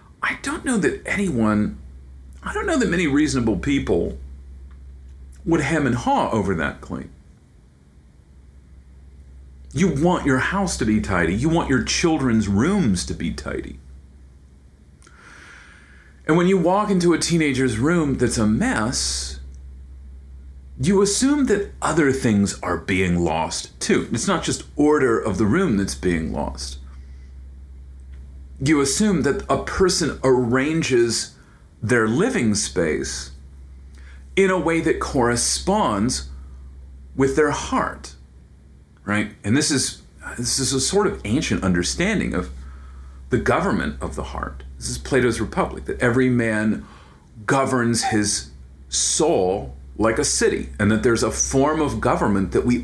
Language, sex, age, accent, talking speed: English, male, 40-59, American, 135 wpm